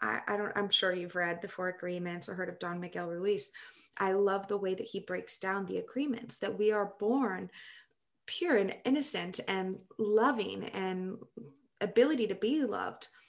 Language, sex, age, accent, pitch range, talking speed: English, female, 20-39, American, 190-230 Hz, 175 wpm